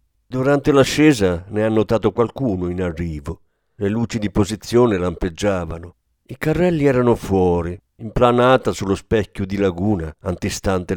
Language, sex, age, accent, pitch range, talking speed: Italian, male, 50-69, native, 90-130 Hz, 125 wpm